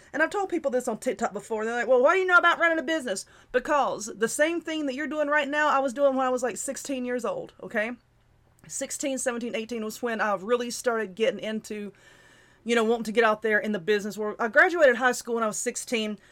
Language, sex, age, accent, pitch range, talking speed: English, female, 30-49, American, 225-300 Hz, 250 wpm